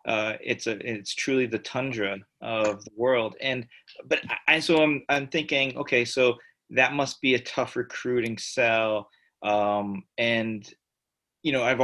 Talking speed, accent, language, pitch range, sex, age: 155 wpm, American, English, 100-125 Hz, male, 30-49